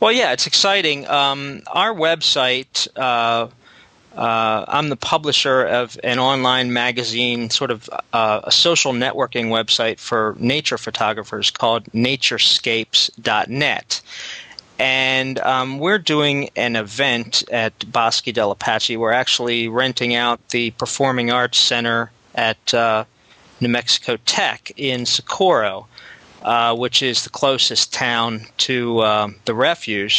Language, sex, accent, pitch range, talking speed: English, male, American, 110-130 Hz, 125 wpm